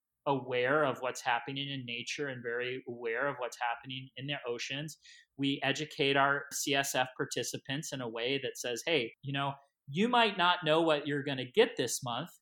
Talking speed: 190 wpm